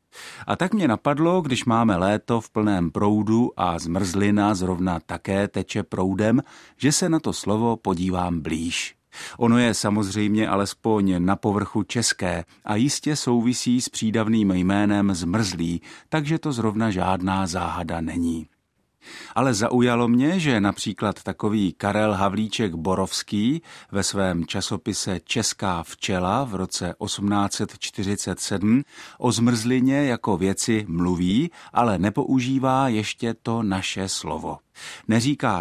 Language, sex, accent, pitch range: Czech, male, native, 95-115 Hz